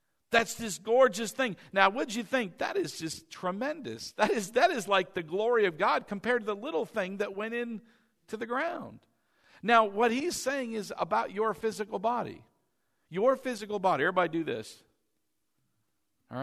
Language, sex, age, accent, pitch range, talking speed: English, male, 50-69, American, 170-235 Hz, 175 wpm